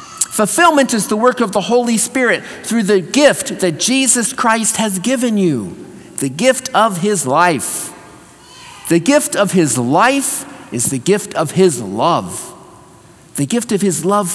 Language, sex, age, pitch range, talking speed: English, male, 50-69, 175-235 Hz, 160 wpm